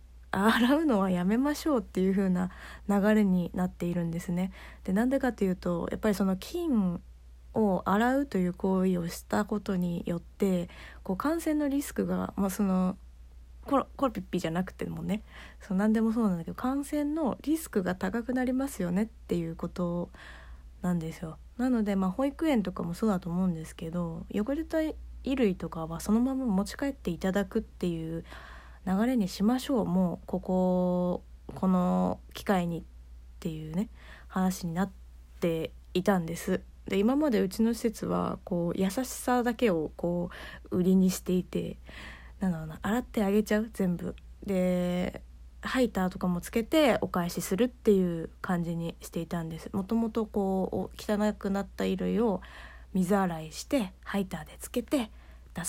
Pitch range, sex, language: 175-225 Hz, female, Japanese